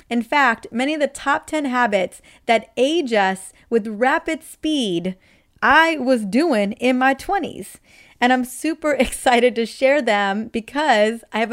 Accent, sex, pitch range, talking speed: American, female, 210-260 Hz, 155 wpm